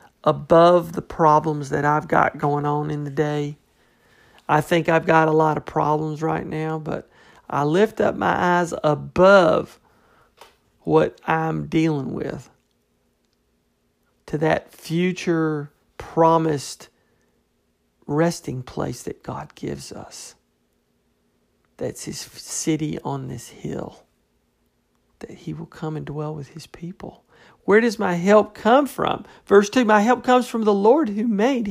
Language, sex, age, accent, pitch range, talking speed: English, male, 50-69, American, 150-210 Hz, 140 wpm